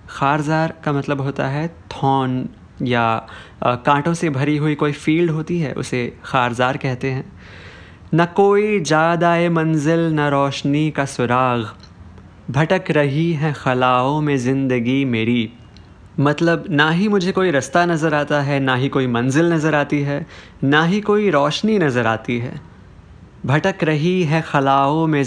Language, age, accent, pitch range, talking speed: Hindi, 20-39, native, 125-160 Hz, 145 wpm